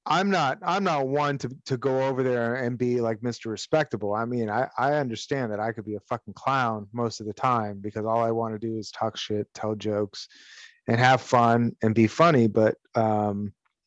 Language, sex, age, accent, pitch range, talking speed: English, male, 30-49, American, 110-135 Hz, 215 wpm